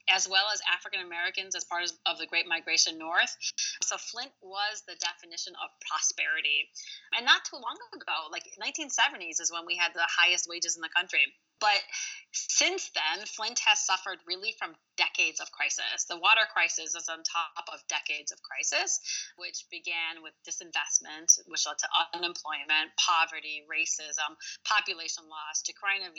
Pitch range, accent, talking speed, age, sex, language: 165-205 Hz, American, 160 wpm, 30-49, female, English